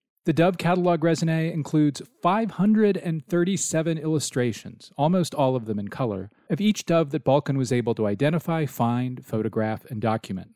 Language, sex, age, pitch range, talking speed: English, male, 40-59, 120-180 Hz, 150 wpm